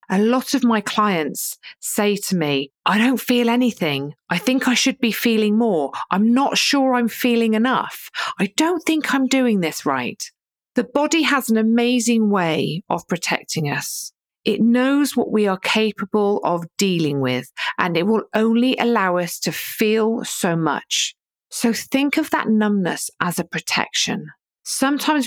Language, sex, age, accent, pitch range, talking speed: English, female, 40-59, British, 180-240 Hz, 165 wpm